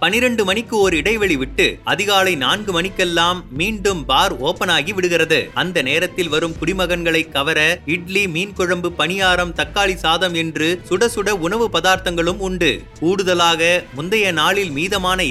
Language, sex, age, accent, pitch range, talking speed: Tamil, male, 30-49, native, 160-185 Hz, 130 wpm